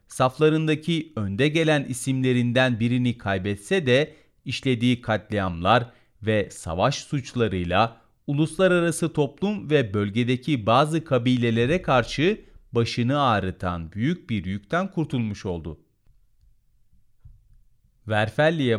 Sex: male